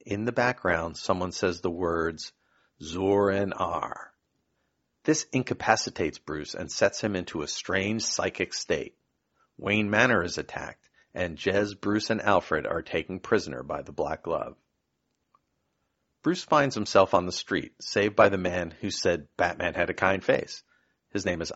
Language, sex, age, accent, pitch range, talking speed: English, male, 40-59, American, 95-120 Hz, 160 wpm